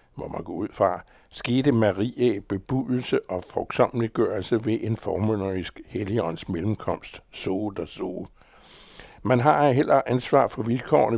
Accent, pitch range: American, 105-125 Hz